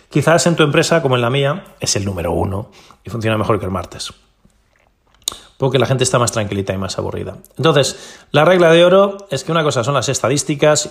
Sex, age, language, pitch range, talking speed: male, 30-49, Spanish, 115-150 Hz, 215 wpm